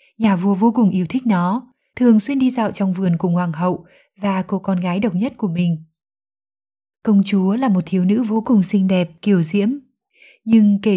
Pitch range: 185-225 Hz